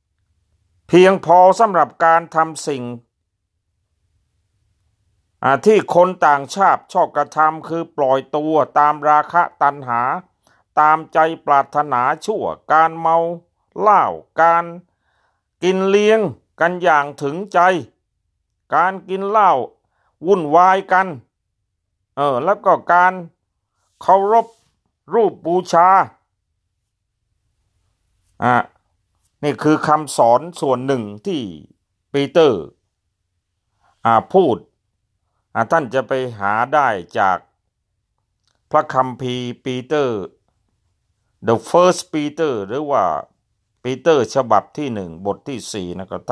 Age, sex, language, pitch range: 60-79, male, Thai, 95-165 Hz